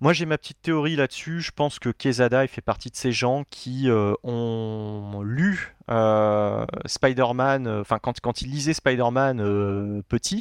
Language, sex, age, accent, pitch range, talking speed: French, male, 30-49, French, 105-130 Hz, 180 wpm